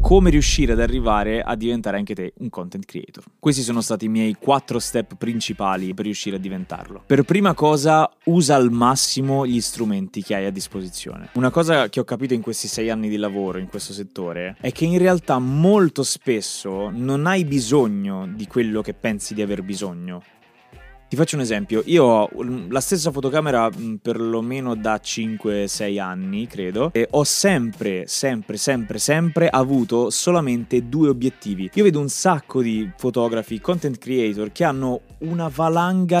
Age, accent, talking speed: 20-39, native, 165 wpm